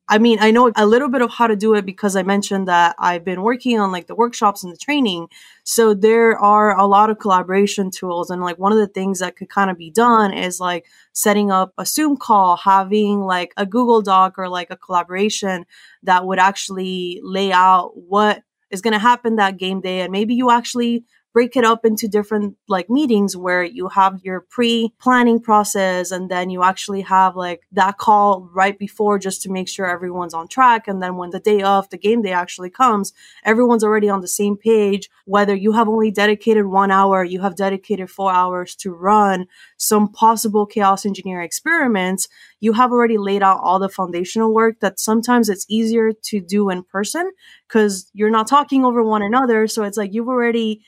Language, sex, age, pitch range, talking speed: English, female, 20-39, 185-220 Hz, 205 wpm